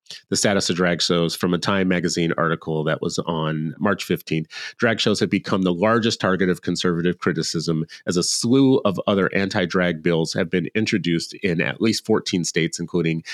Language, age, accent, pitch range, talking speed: English, 30-49, American, 85-100 Hz, 185 wpm